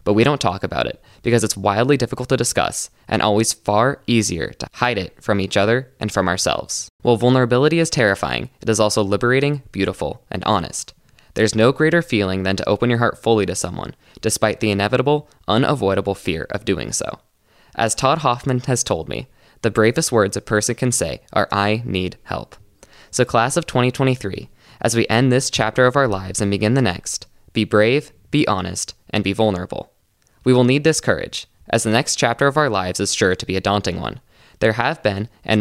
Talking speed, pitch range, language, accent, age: 200 wpm, 100-130 Hz, English, American, 10-29